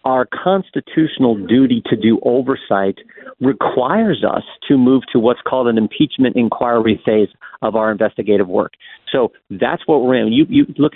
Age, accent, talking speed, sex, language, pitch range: 50-69, American, 160 wpm, male, English, 120-145 Hz